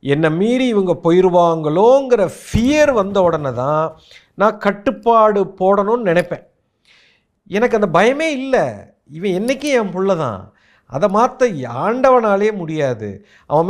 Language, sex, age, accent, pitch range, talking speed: Tamil, male, 50-69, native, 135-205 Hz, 115 wpm